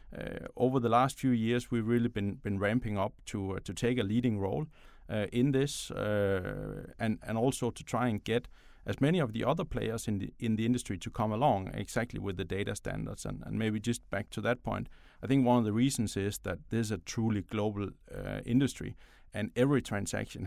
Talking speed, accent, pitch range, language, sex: 220 wpm, Danish, 105-125 Hz, English, male